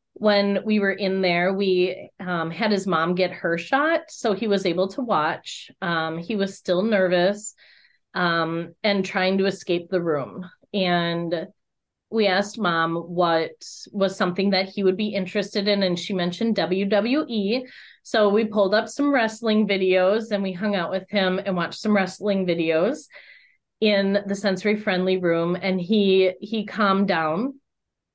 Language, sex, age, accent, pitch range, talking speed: English, female, 30-49, American, 180-215 Hz, 160 wpm